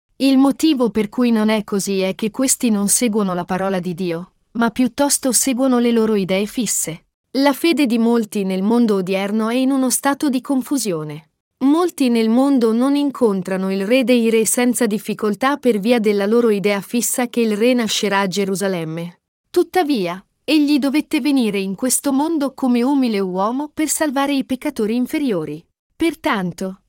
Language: Italian